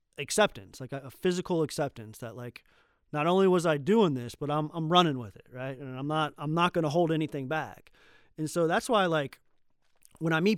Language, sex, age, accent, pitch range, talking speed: English, male, 30-49, American, 130-165 Hz, 225 wpm